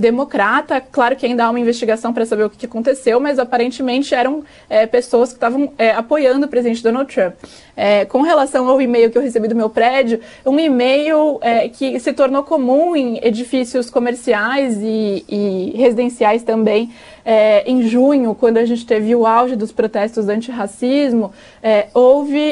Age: 20-39